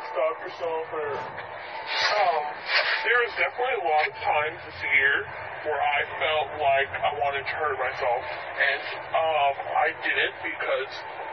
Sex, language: female, English